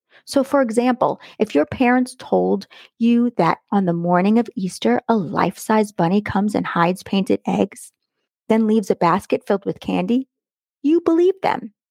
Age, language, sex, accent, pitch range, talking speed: 30-49, English, female, American, 200-250 Hz, 160 wpm